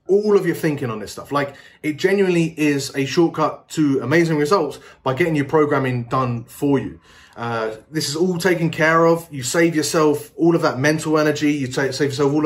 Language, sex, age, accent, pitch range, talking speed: English, male, 20-39, British, 130-160 Hz, 200 wpm